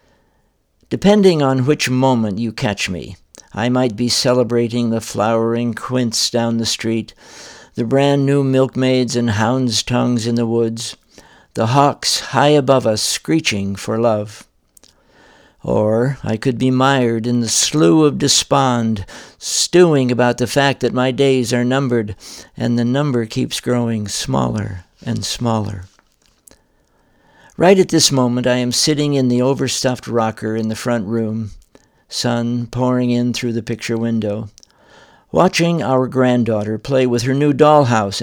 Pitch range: 115-135 Hz